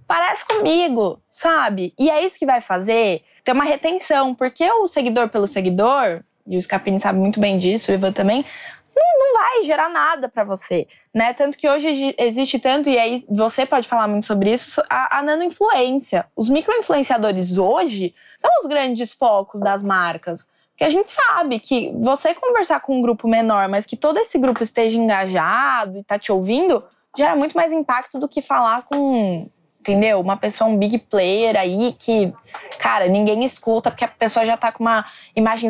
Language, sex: Portuguese, female